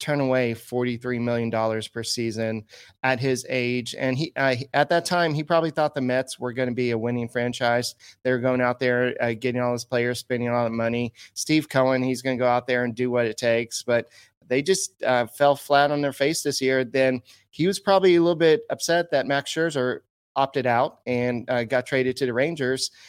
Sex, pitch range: male, 125-150 Hz